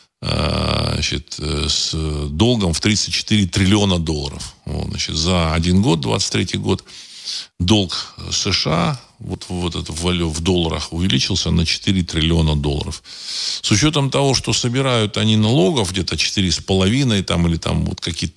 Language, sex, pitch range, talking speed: Russian, male, 85-115 Hz, 135 wpm